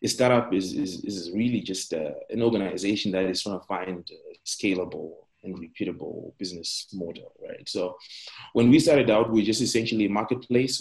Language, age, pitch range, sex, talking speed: English, 20-39, 95-120 Hz, male, 185 wpm